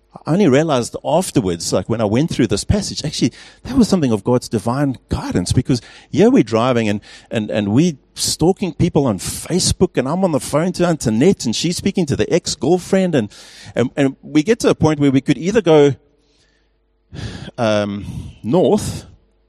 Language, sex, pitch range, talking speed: English, male, 110-165 Hz, 180 wpm